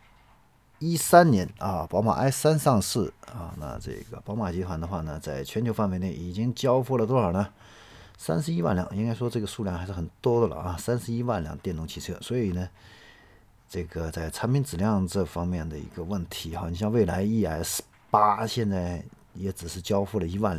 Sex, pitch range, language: male, 85-110 Hz, Chinese